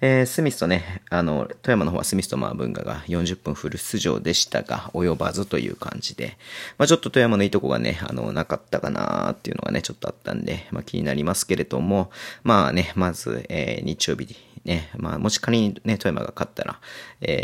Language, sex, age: Japanese, male, 40-59